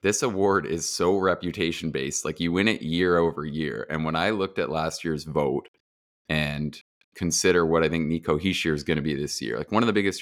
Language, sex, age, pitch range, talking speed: English, male, 20-39, 75-85 Hz, 225 wpm